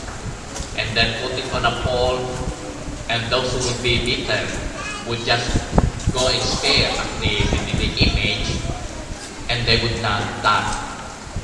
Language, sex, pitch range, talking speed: English, male, 110-120 Hz, 140 wpm